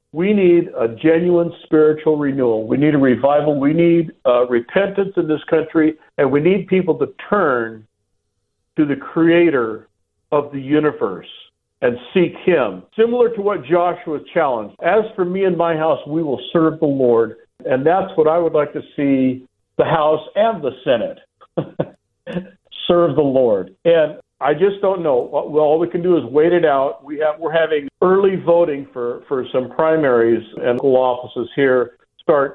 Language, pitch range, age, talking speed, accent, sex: English, 130-180 Hz, 60-79, 165 wpm, American, male